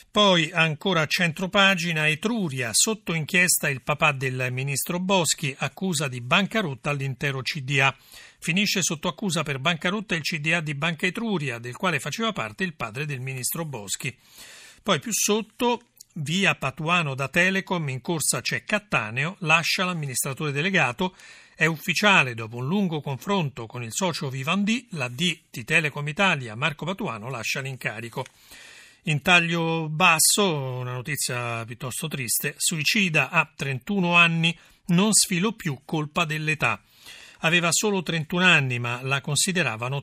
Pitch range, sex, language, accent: 135-185 Hz, male, Italian, native